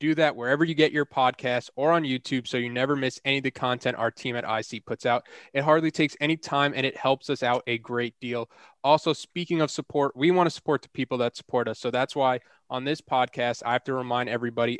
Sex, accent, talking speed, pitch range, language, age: male, American, 245 wpm, 120-140 Hz, English, 20-39